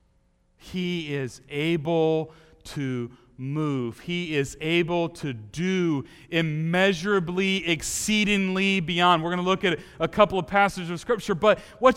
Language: English